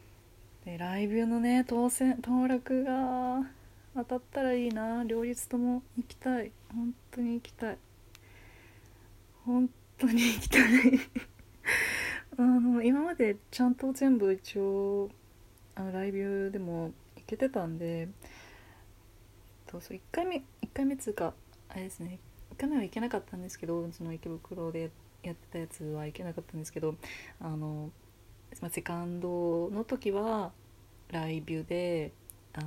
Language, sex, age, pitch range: Japanese, female, 30-49, 160-230 Hz